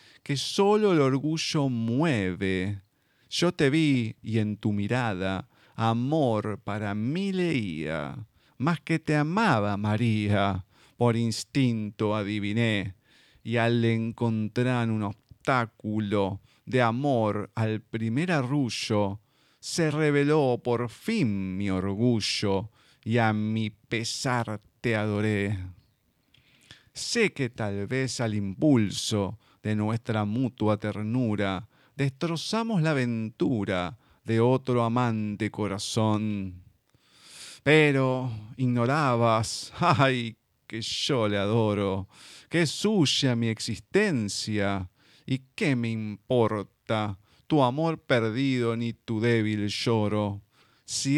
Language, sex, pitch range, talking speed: Spanish, male, 105-135 Hz, 100 wpm